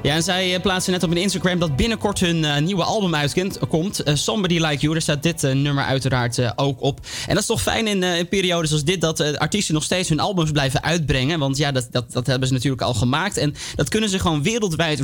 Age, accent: 20-39, Dutch